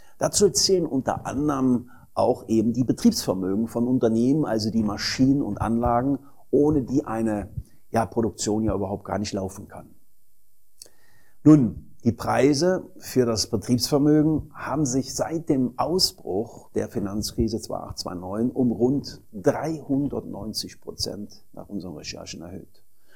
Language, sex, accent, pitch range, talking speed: German, male, German, 105-130 Hz, 125 wpm